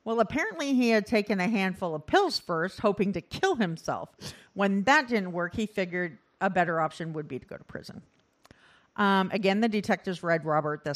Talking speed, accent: 195 wpm, American